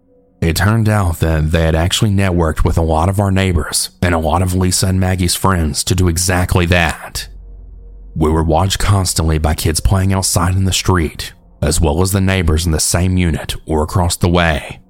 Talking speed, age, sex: 200 wpm, 30-49, male